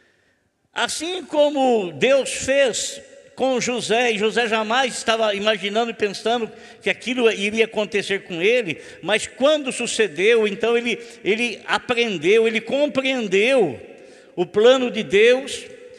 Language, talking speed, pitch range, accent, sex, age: Portuguese, 120 wpm, 220-275 Hz, Brazilian, male, 60-79